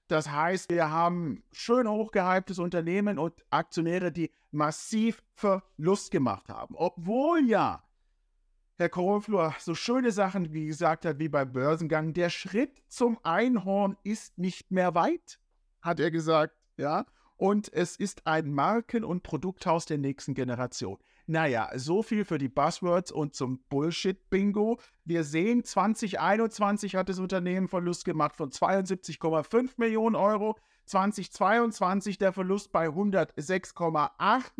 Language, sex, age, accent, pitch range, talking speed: German, male, 50-69, German, 155-200 Hz, 130 wpm